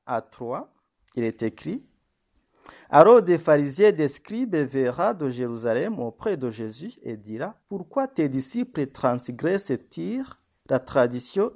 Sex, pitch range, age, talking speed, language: male, 140-215 Hz, 50-69, 140 wpm, French